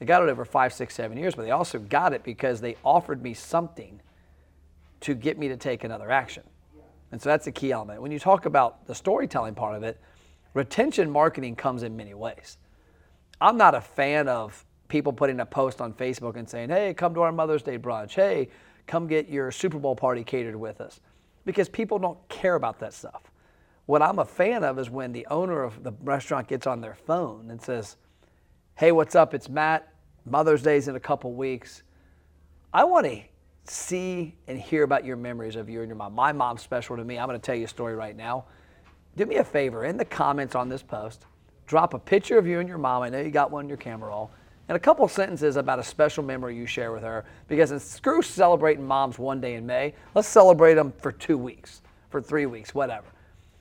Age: 40-59